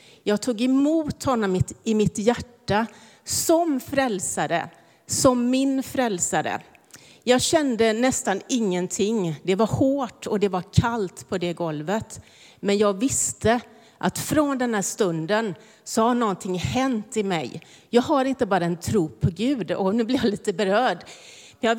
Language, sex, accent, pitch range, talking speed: Swedish, female, native, 185-255 Hz, 150 wpm